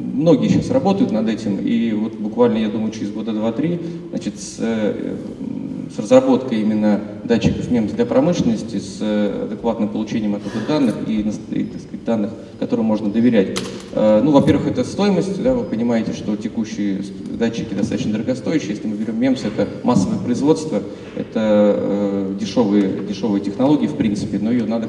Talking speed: 155 wpm